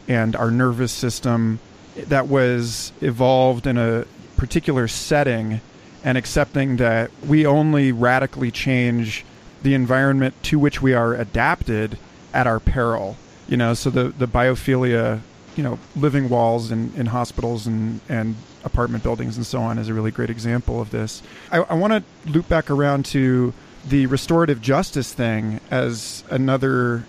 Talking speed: 150 wpm